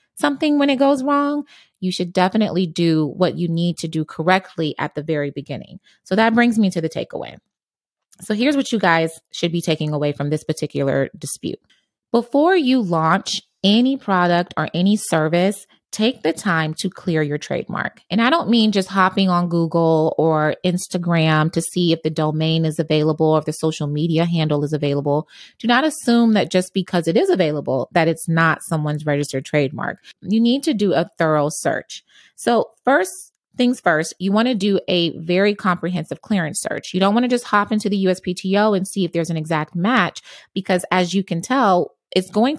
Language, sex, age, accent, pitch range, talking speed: English, female, 30-49, American, 160-205 Hz, 190 wpm